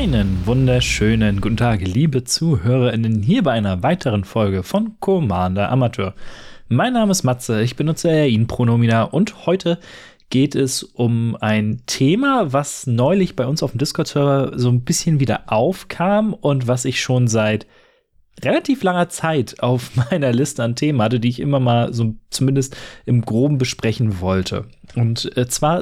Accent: German